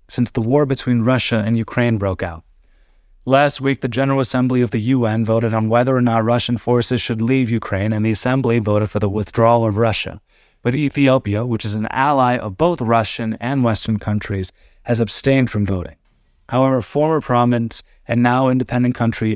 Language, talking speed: English, 185 wpm